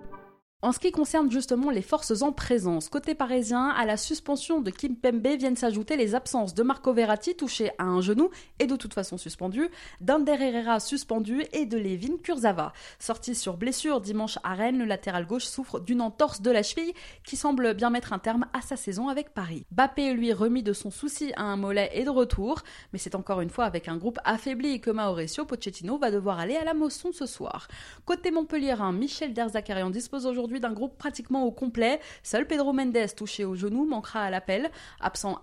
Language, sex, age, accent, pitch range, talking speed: French, female, 20-39, French, 205-280 Hz, 200 wpm